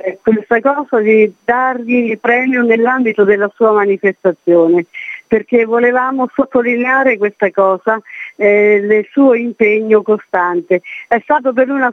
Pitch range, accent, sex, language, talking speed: 205-255 Hz, native, female, Italian, 125 wpm